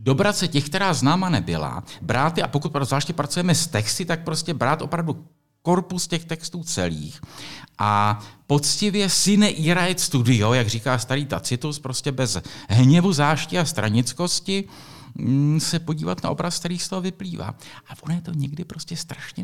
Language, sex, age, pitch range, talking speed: Czech, male, 50-69, 125-175 Hz, 155 wpm